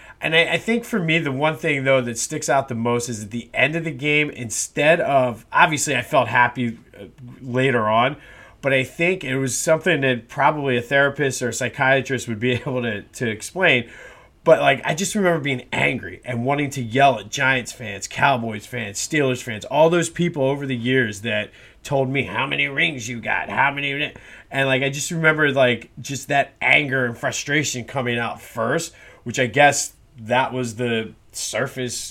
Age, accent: 30-49, American